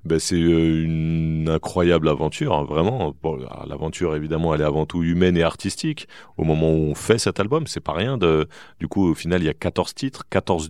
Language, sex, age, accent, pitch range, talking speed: French, male, 30-49, French, 75-85 Hz, 220 wpm